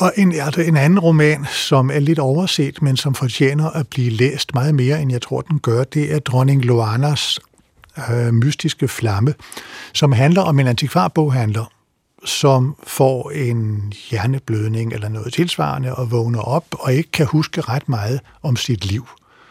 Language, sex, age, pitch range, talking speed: Danish, male, 60-79, 115-145 Hz, 165 wpm